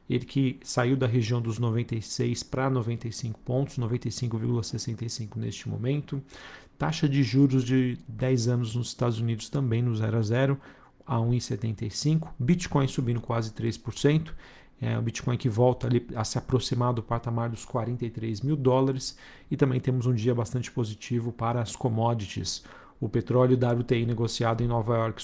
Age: 40-59